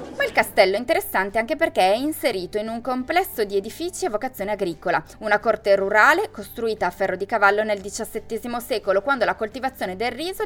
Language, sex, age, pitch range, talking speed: Italian, female, 20-39, 195-290 Hz, 185 wpm